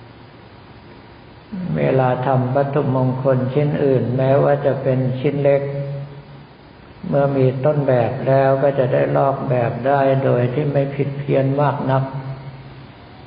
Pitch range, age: 125-140 Hz, 60-79